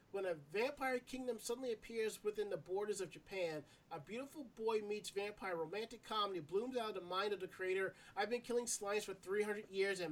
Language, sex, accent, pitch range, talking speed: English, male, American, 165-225 Hz, 200 wpm